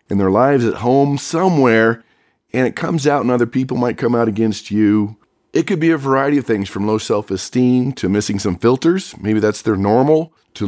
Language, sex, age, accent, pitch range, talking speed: English, male, 40-59, American, 110-135 Hz, 210 wpm